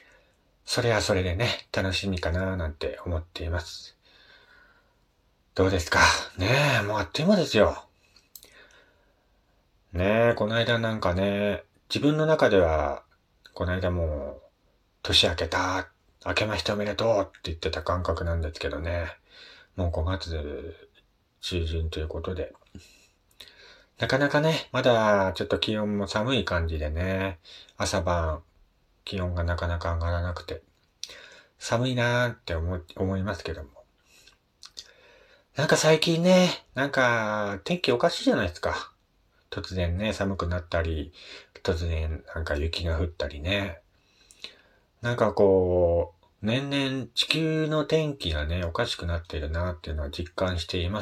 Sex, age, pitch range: male, 40-59, 85-115 Hz